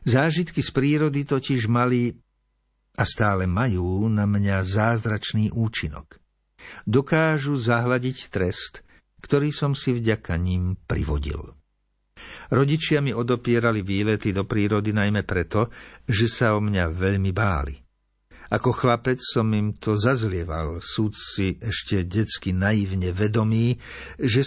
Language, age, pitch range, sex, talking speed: Slovak, 50-69, 100-125 Hz, male, 120 wpm